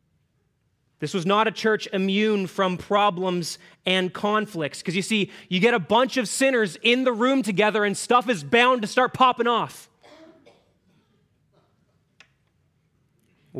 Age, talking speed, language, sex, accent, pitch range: 30-49, 140 wpm, English, male, American, 155-215 Hz